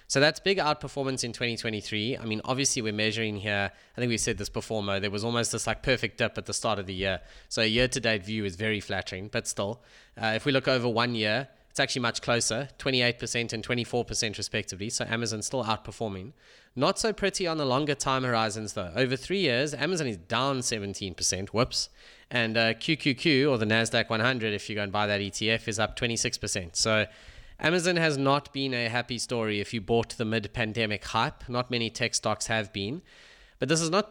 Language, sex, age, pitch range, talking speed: English, male, 20-39, 105-130 Hz, 210 wpm